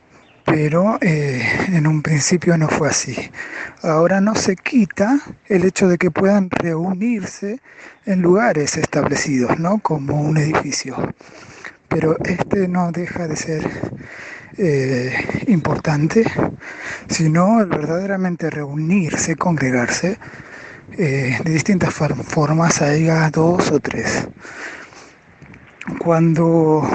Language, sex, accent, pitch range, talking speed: Spanish, male, Argentinian, 155-195 Hz, 105 wpm